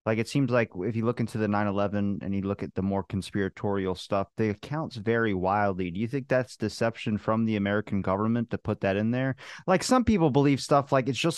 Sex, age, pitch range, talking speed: male, 30-49, 110-155 Hz, 245 wpm